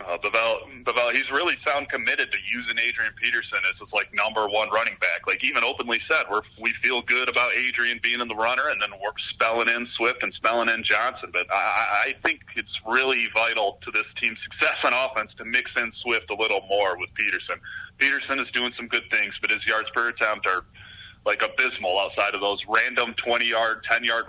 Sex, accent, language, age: male, American, English, 30-49